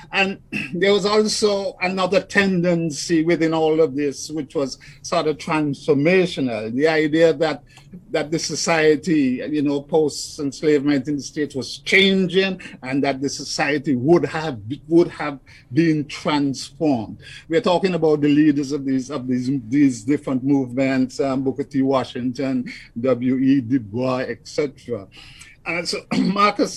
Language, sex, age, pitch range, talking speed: English, male, 50-69, 140-175 Hz, 135 wpm